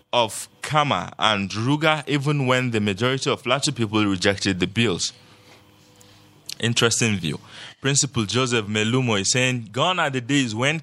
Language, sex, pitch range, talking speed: English, male, 115-150 Hz, 145 wpm